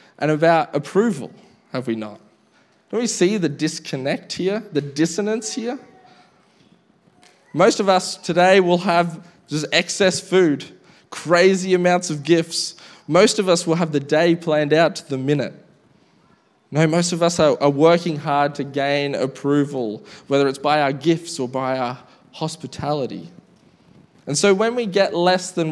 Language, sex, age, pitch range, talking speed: English, male, 20-39, 140-175 Hz, 155 wpm